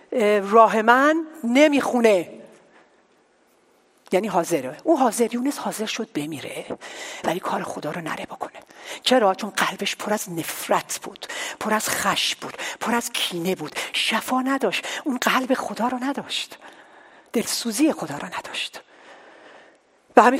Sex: female